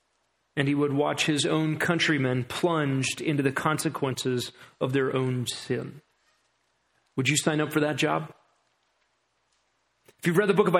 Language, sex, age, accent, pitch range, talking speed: English, male, 40-59, American, 145-180 Hz, 155 wpm